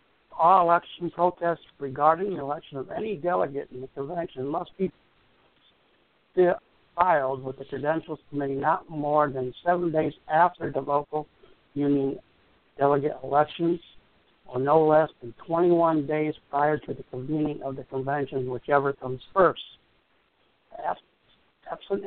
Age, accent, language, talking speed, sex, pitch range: 60-79, American, English, 130 wpm, male, 140-170 Hz